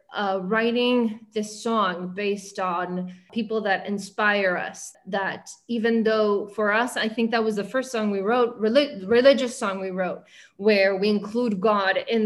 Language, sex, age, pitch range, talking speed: English, female, 20-39, 205-240 Hz, 160 wpm